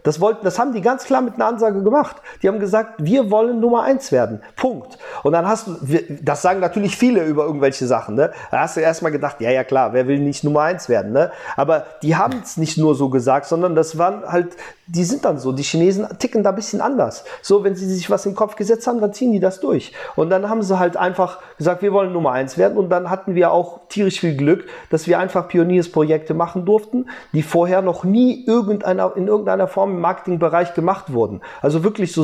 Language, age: German, 40-59